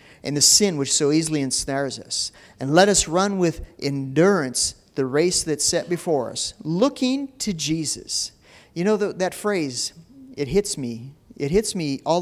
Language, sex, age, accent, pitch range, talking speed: English, male, 40-59, American, 150-220 Hz, 170 wpm